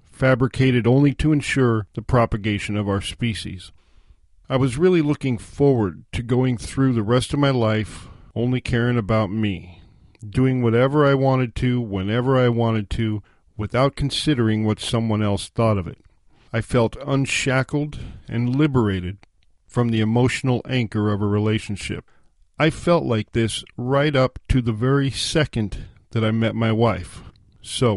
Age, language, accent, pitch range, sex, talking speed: 50-69, English, American, 105-125 Hz, male, 150 wpm